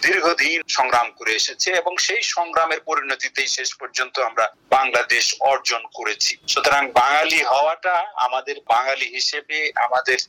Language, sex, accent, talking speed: Bengali, male, native, 110 wpm